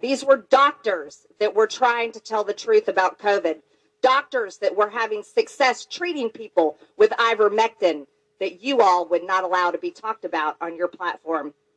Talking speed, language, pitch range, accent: 175 wpm, English, 210-315 Hz, American